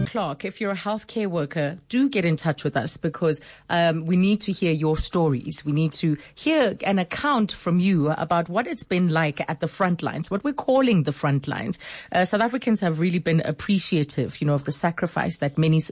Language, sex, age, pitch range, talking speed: English, female, 30-49, 150-185 Hz, 215 wpm